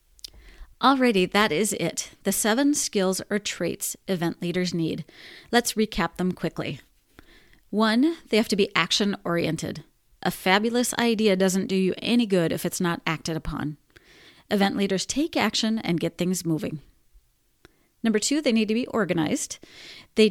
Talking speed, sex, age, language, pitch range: 155 wpm, female, 30-49, English, 180-225 Hz